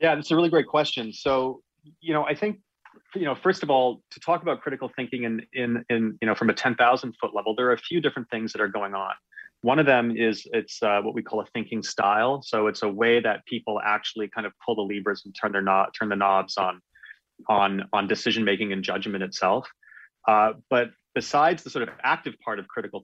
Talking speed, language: 230 wpm, English